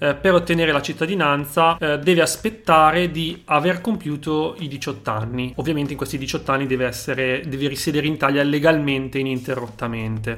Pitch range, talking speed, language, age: 135-165 Hz, 150 wpm, Italian, 30-49